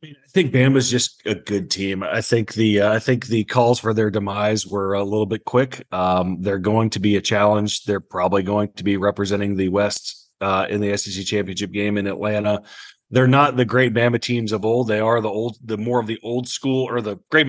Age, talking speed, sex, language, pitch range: 30-49, 240 wpm, male, English, 105-120 Hz